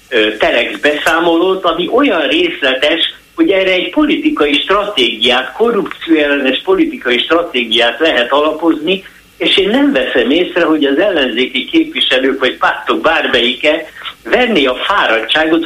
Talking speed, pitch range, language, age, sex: 115 wpm, 130-200 Hz, Hungarian, 60-79, male